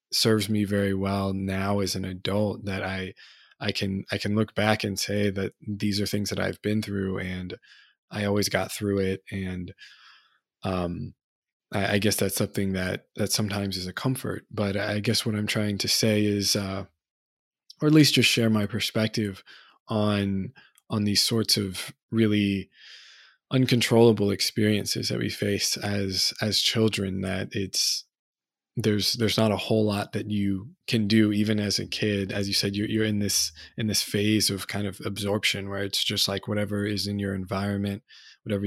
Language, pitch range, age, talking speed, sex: English, 95-105 Hz, 20-39, 180 wpm, male